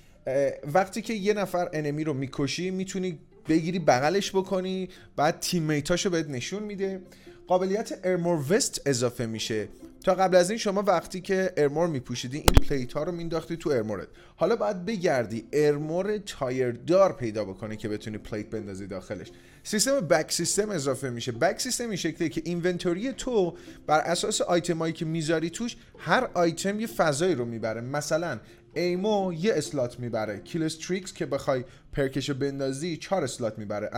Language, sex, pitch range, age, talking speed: Persian, male, 130-185 Hz, 30-49, 150 wpm